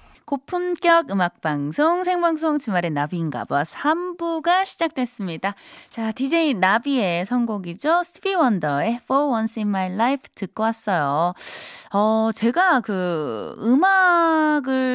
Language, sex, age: Korean, female, 20-39